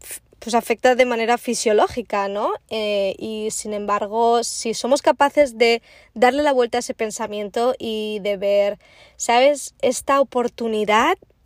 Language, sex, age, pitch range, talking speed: Spanish, female, 20-39, 215-260 Hz, 135 wpm